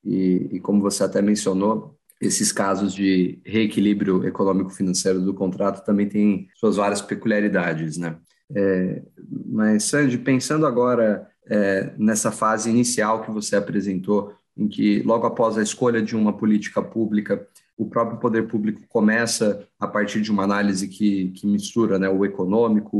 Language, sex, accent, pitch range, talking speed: Portuguese, male, Brazilian, 100-115 Hz, 145 wpm